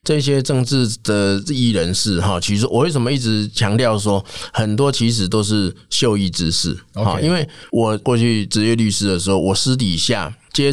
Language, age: Chinese, 20-39